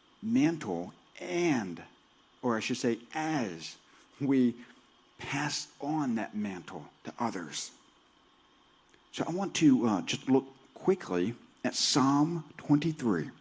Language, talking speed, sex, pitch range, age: English, 110 wpm, male, 110-150 Hz, 50-69